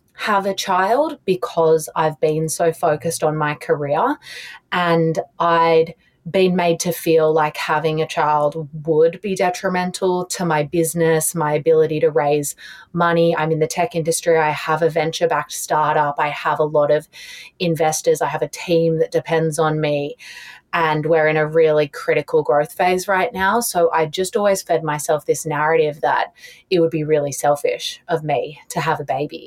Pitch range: 155-175 Hz